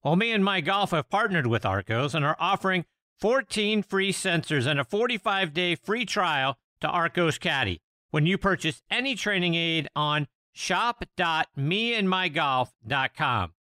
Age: 50-69